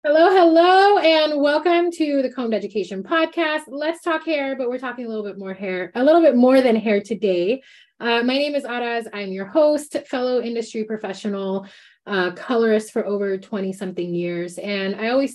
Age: 20-39